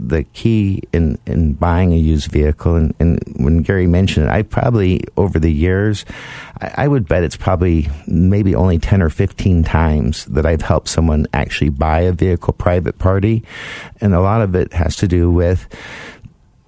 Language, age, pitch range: English, 50-69, 80-95 Hz